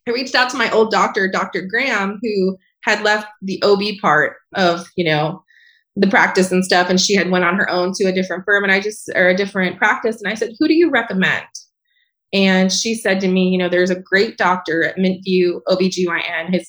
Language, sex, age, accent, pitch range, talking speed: English, female, 20-39, American, 185-235 Hz, 225 wpm